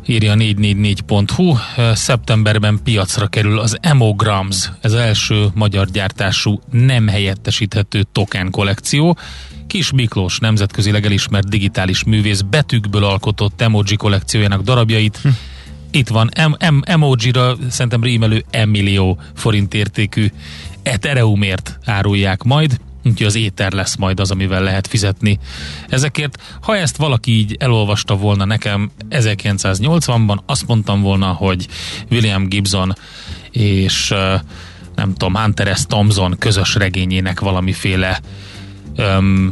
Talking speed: 110 wpm